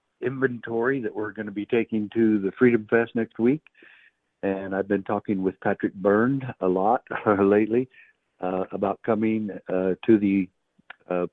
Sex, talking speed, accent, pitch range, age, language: male, 160 wpm, American, 95-125 Hz, 60-79, English